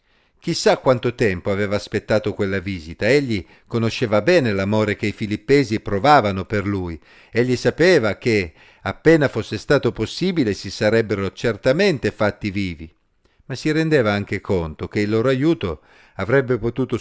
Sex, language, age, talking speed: male, Italian, 50-69, 140 wpm